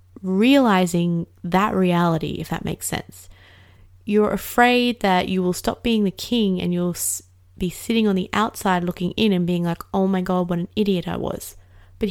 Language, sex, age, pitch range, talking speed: English, female, 20-39, 160-220 Hz, 185 wpm